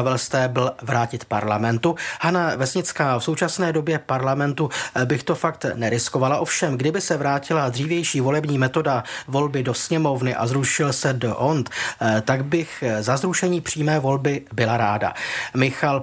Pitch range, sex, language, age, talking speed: 125-155 Hz, male, Czech, 30-49, 140 wpm